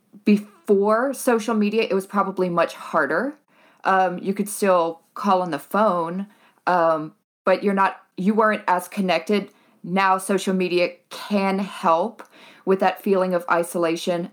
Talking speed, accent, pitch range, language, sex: 140 wpm, American, 165-200 Hz, English, female